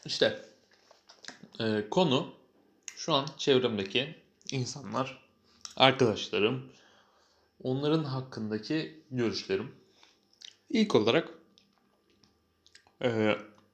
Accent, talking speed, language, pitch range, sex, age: native, 60 wpm, Turkish, 105-150 Hz, male, 30-49